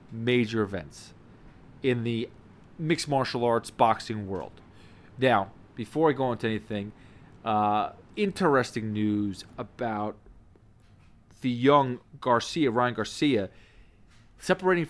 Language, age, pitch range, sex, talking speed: English, 30-49, 110-135 Hz, male, 100 wpm